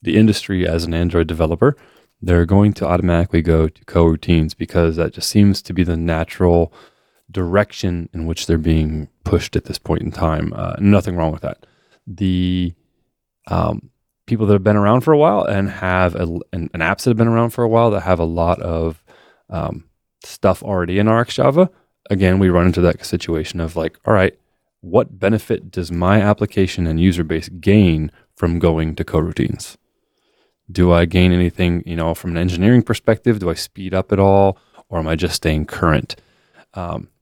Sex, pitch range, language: male, 80-100 Hz, English